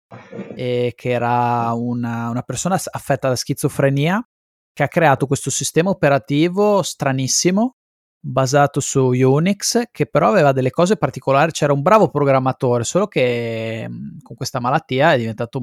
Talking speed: 140 wpm